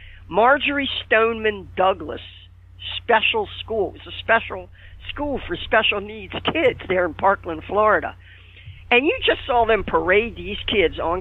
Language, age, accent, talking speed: English, 50-69, American, 140 wpm